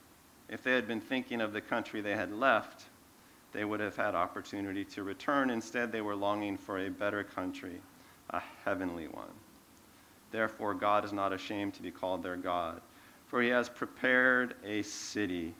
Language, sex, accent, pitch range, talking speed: English, male, American, 100-130 Hz, 175 wpm